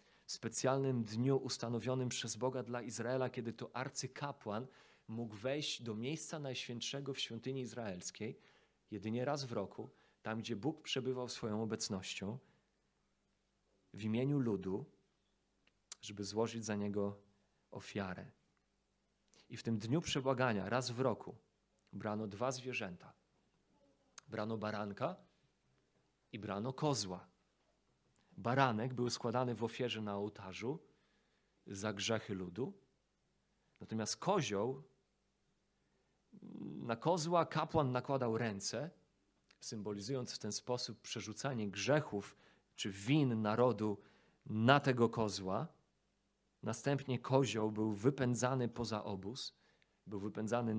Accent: native